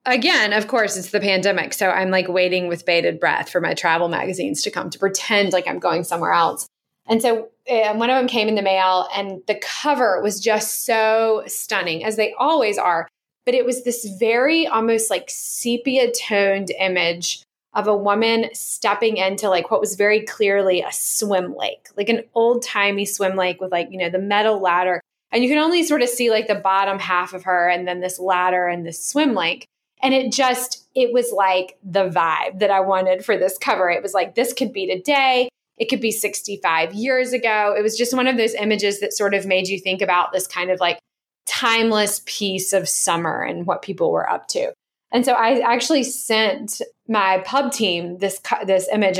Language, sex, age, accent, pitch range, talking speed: English, female, 20-39, American, 185-235 Hz, 205 wpm